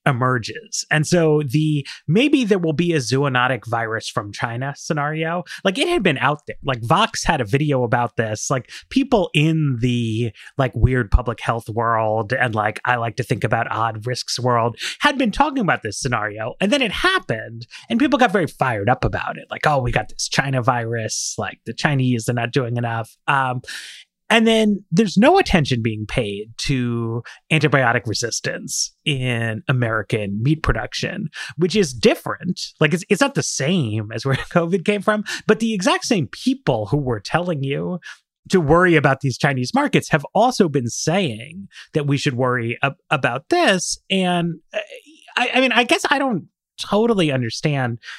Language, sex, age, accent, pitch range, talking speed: English, male, 30-49, American, 120-185 Hz, 175 wpm